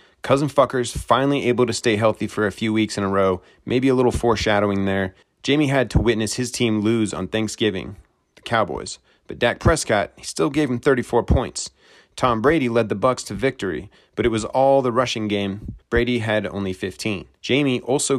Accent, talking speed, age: American, 195 wpm, 30-49